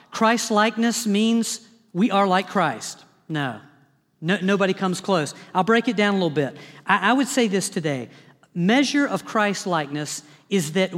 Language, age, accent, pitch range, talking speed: English, 50-69, American, 180-230 Hz, 160 wpm